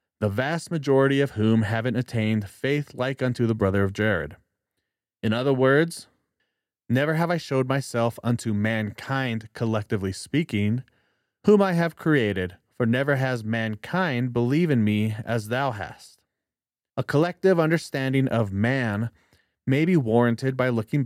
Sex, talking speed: male, 140 wpm